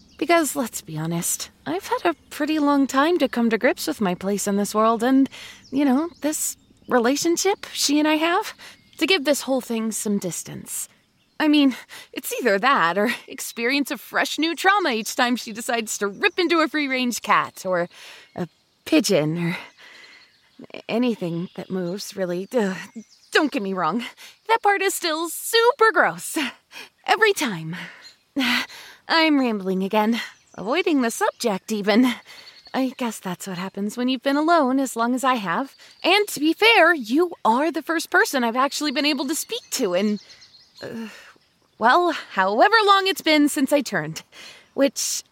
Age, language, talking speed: 20-39, English, 165 wpm